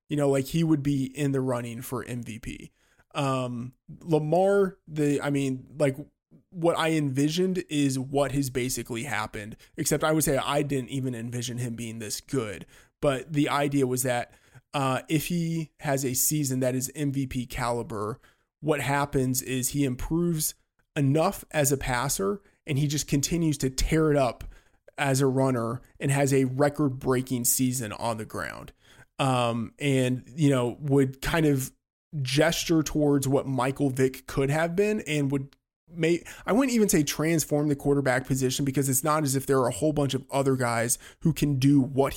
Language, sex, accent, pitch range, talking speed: English, male, American, 125-150 Hz, 175 wpm